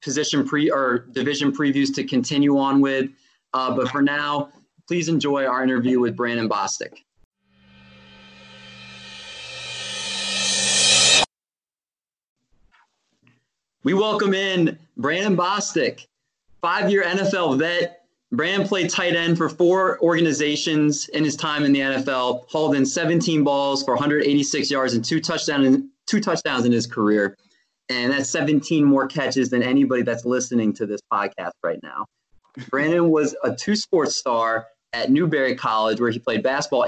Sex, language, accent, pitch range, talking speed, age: male, English, American, 120-155 Hz, 135 wpm, 20-39